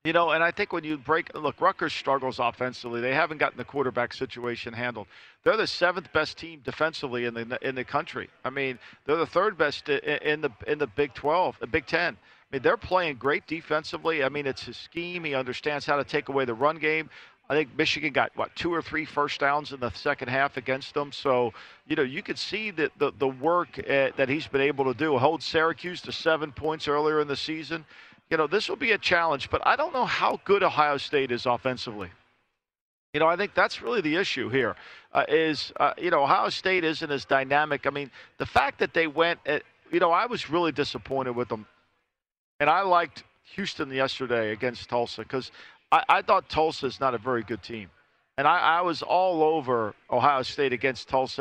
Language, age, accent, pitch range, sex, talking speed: English, 50-69, American, 125-160 Hz, male, 220 wpm